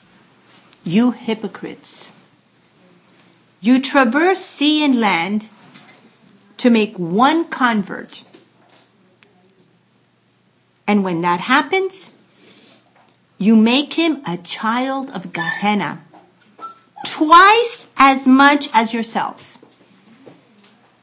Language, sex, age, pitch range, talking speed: English, female, 50-69, 210-305 Hz, 75 wpm